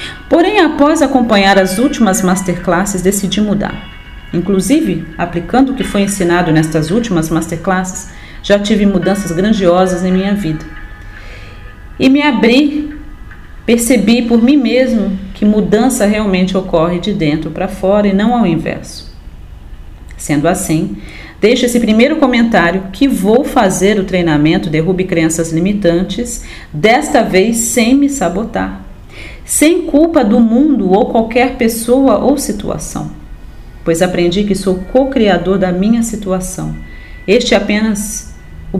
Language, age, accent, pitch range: Portuguese, 40-59, Brazilian, 170-230 Hz